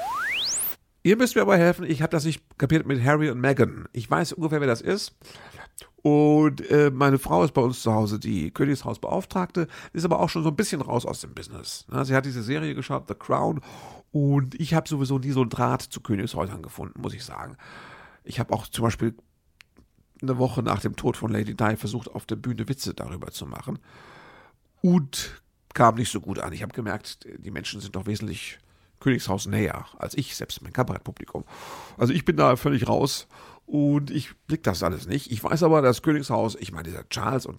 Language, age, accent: German, 50-69, German